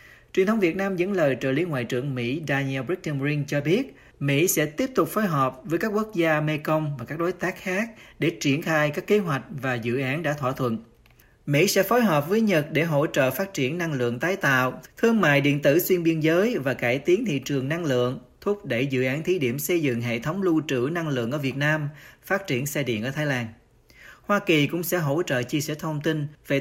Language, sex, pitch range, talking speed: Vietnamese, male, 130-170 Hz, 240 wpm